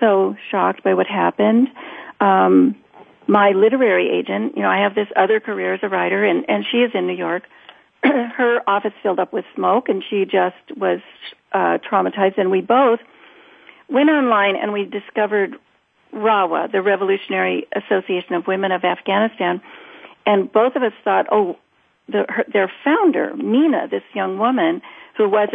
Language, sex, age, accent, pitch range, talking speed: English, female, 50-69, American, 190-245 Hz, 165 wpm